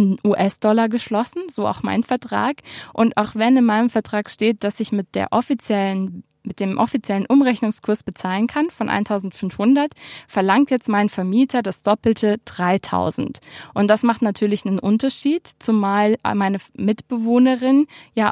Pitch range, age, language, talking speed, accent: 205-240 Hz, 20-39, German, 140 wpm, German